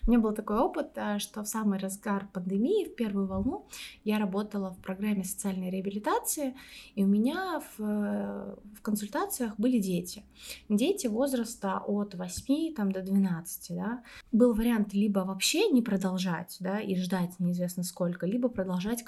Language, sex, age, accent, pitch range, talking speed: Russian, female, 20-39, native, 190-230 Hz, 150 wpm